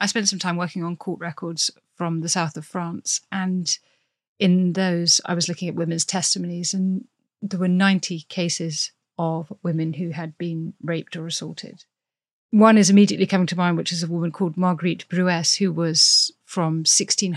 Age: 40-59